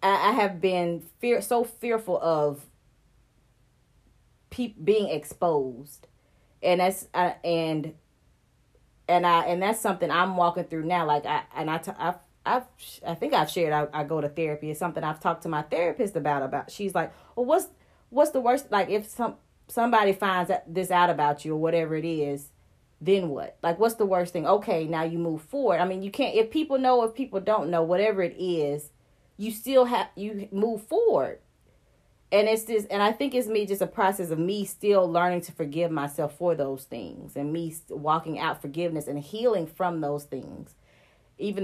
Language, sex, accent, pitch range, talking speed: English, female, American, 155-195 Hz, 195 wpm